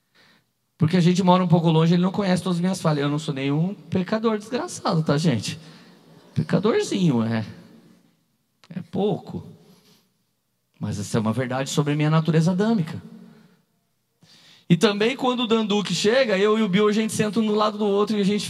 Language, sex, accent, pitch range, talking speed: Gujarati, male, Brazilian, 150-185 Hz, 185 wpm